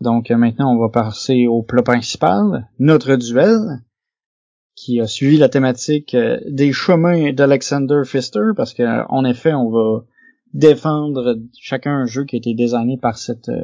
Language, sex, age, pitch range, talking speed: French, male, 30-49, 120-155 Hz, 150 wpm